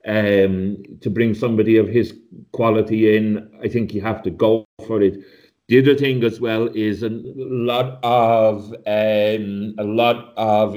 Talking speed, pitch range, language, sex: 160 wpm, 105-120 Hz, English, male